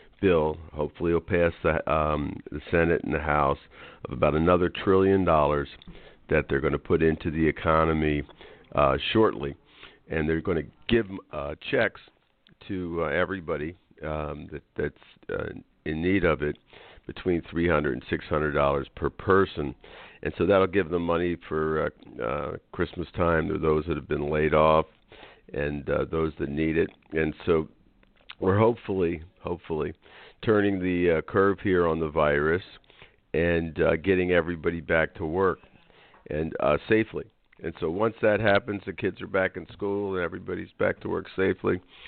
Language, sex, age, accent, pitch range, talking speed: English, male, 50-69, American, 80-95 Hz, 165 wpm